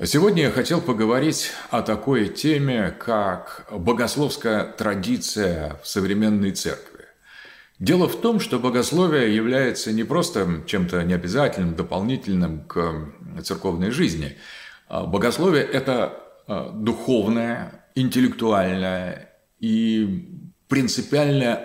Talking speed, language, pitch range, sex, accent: 90 wpm, Russian, 90-125 Hz, male, native